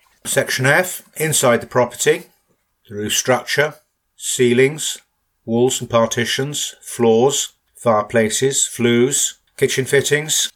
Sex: male